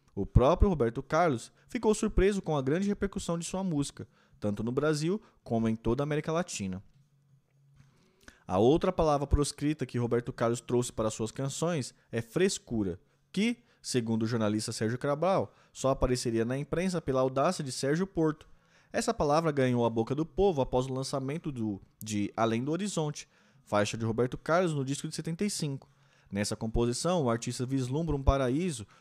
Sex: male